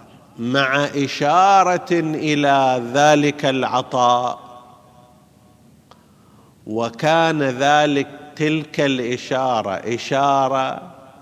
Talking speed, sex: 55 wpm, male